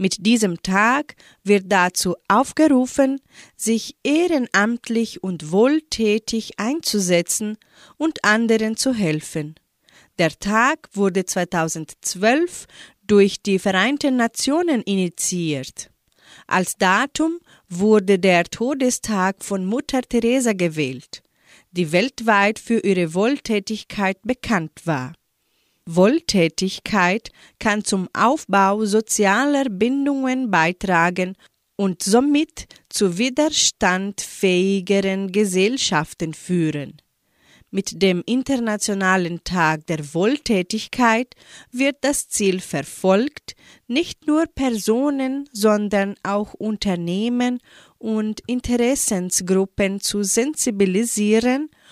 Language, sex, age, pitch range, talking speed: German, female, 40-59, 185-245 Hz, 85 wpm